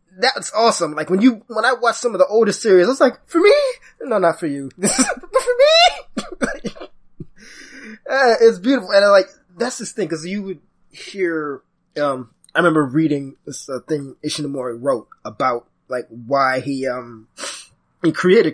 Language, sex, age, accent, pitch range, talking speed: English, male, 20-39, American, 145-210 Hz, 175 wpm